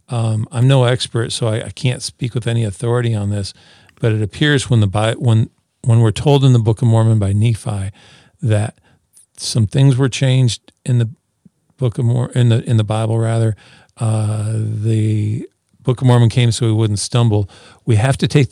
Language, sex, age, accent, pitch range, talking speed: English, male, 50-69, American, 110-125 Hz, 195 wpm